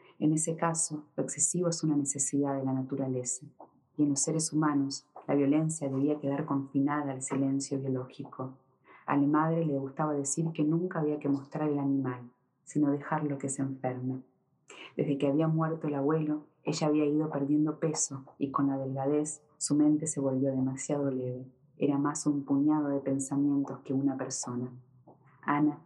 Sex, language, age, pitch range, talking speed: female, Spanish, 30-49, 135-150 Hz, 170 wpm